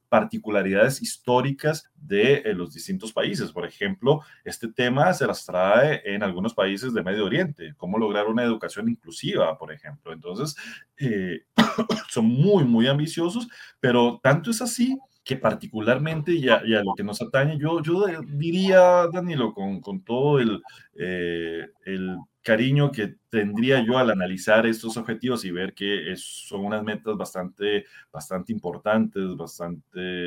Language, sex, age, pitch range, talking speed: Spanish, male, 30-49, 95-145 Hz, 150 wpm